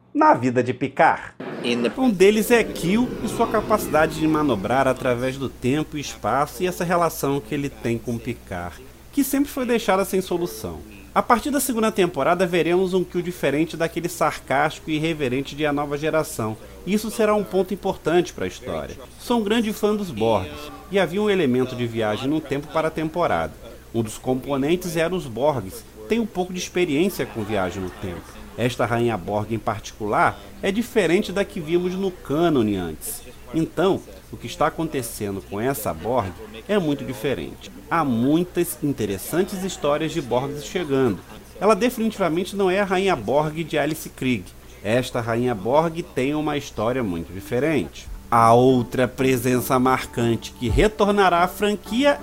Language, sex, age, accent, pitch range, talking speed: Portuguese, male, 40-59, Brazilian, 120-190 Hz, 170 wpm